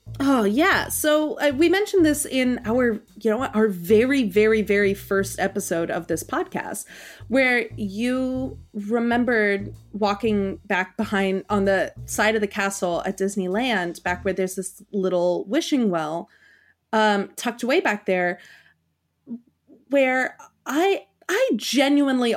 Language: English